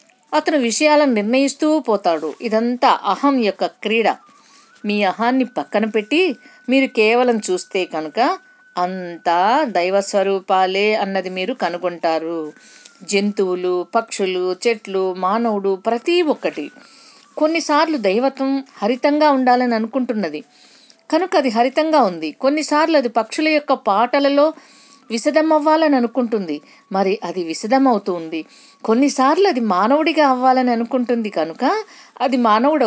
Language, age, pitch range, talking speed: Telugu, 50-69, 195-280 Hz, 105 wpm